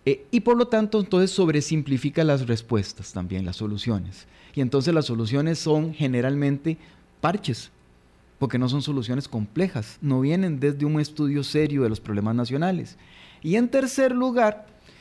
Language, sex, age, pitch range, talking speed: Spanish, male, 30-49, 130-160 Hz, 150 wpm